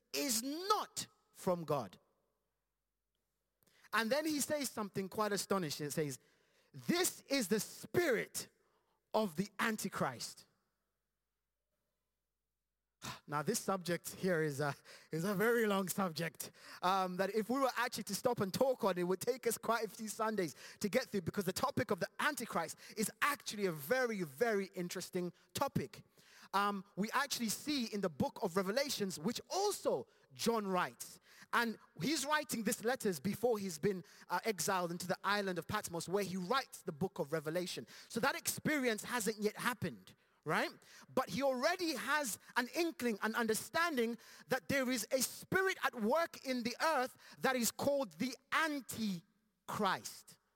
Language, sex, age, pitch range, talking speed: English, male, 30-49, 190-260 Hz, 155 wpm